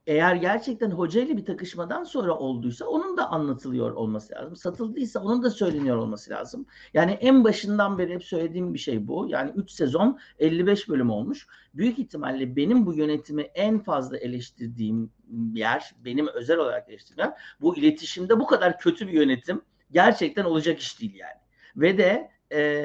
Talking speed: 165 wpm